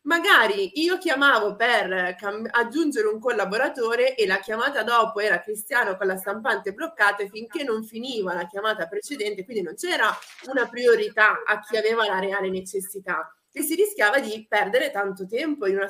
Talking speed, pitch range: 160 wpm, 195-295 Hz